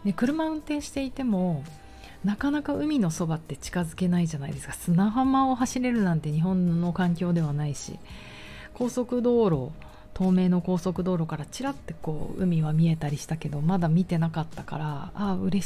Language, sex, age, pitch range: Japanese, female, 40-59, 155-205 Hz